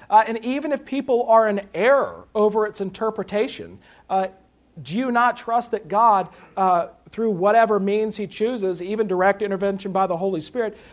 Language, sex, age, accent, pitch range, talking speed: English, male, 40-59, American, 180-225 Hz, 170 wpm